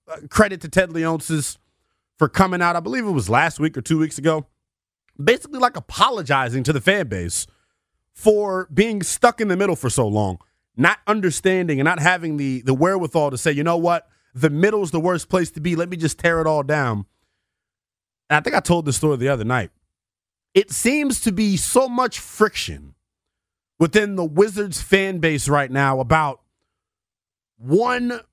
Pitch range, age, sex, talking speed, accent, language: 140-205 Hz, 30-49, male, 180 wpm, American, English